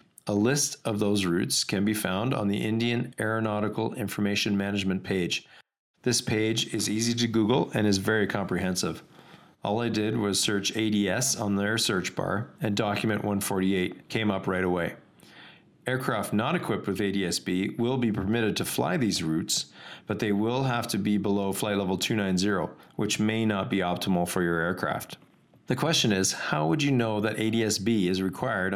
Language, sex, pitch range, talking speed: English, male, 95-115 Hz, 175 wpm